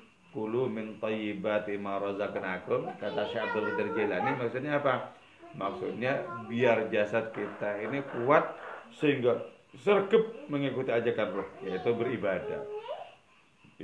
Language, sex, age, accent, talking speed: English, male, 40-59, Indonesian, 95 wpm